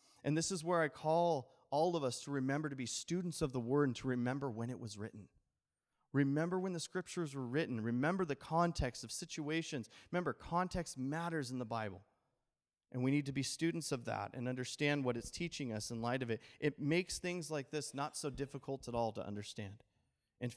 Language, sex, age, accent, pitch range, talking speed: English, male, 30-49, American, 115-155 Hz, 210 wpm